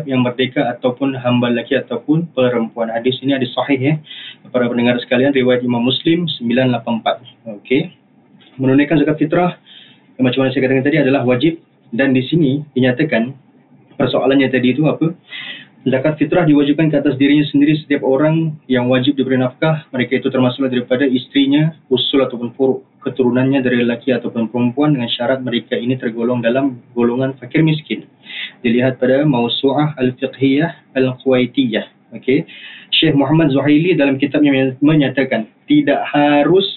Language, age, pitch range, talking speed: Malay, 30-49, 125-145 Hz, 145 wpm